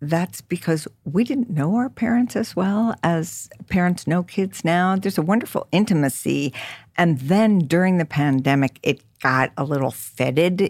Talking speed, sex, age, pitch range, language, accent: 155 wpm, female, 60-79, 135-180 Hz, English, American